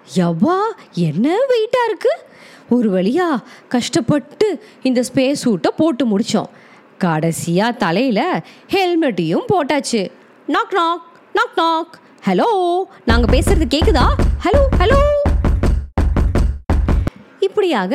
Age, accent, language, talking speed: 20-39, native, Tamil, 80 wpm